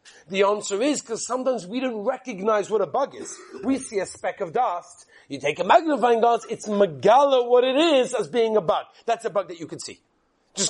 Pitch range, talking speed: 200-240 Hz, 225 wpm